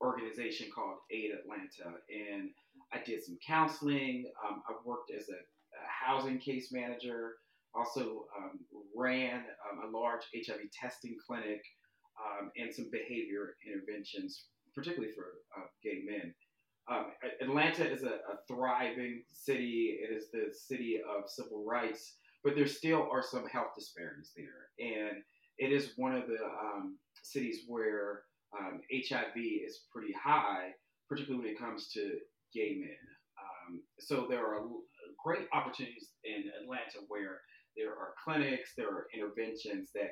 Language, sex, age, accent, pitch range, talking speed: English, male, 30-49, American, 110-160 Hz, 145 wpm